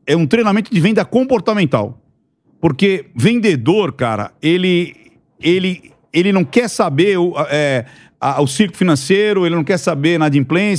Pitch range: 155-215 Hz